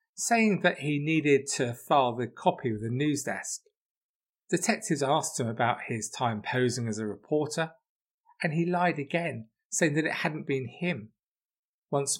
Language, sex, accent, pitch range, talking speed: English, male, British, 120-170 Hz, 160 wpm